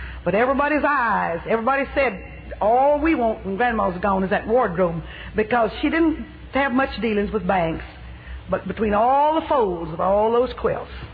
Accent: American